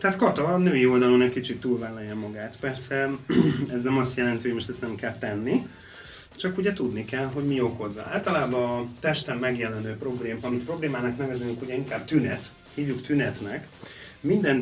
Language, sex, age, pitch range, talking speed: Hungarian, male, 30-49, 120-140 Hz, 165 wpm